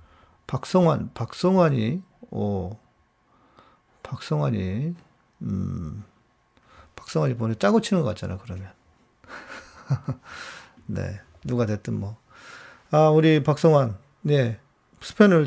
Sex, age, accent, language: male, 40-59, native, Korean